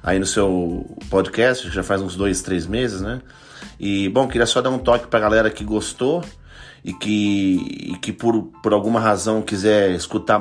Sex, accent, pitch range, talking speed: male, Brazilian, 95-115 Hz, 185 wpm